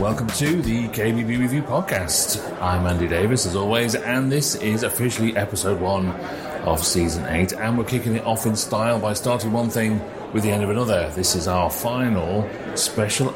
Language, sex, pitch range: English, male, 90-120 Hz